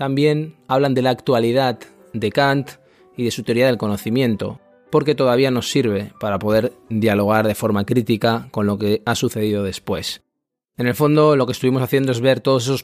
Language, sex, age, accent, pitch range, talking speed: Spanish, male, 20-39, Spanish, 110-140 Hz, 185 wpm